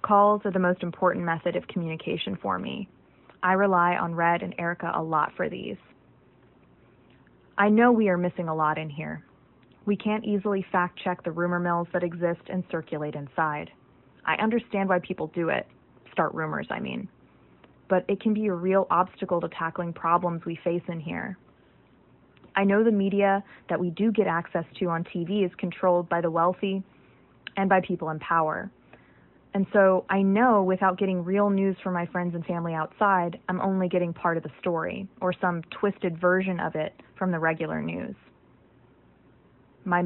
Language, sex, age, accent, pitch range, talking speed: English, female, 20-39, American, 165-195 Hz, 180 wpm